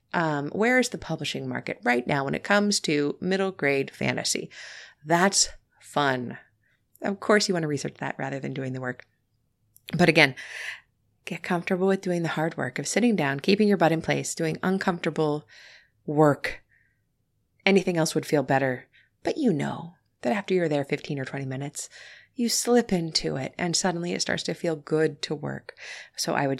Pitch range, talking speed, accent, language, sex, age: 140-180 Hz, 180 wpm, American, English, female, 30-49